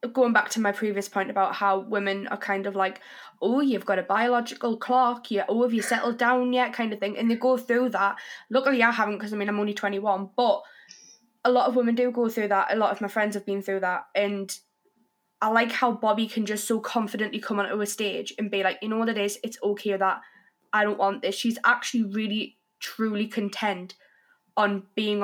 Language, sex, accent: English, female, British